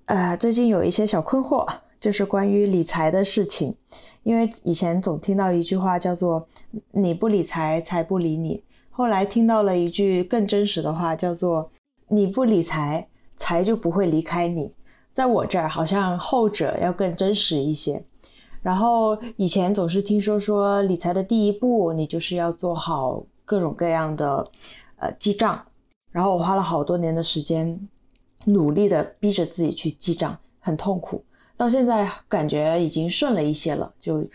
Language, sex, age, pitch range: Chinese, female, 20-39, 165-205 Hz